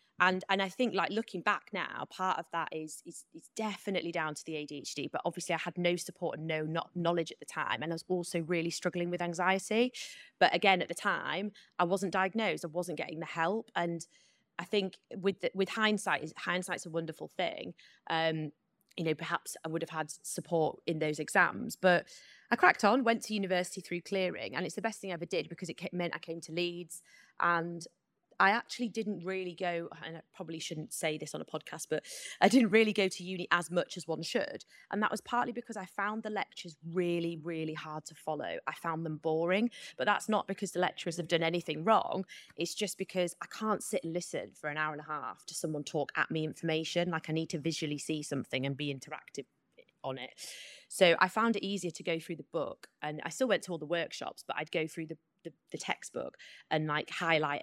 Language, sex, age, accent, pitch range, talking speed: English, female, 20-39, British, 160-190 Hz, 225 wpm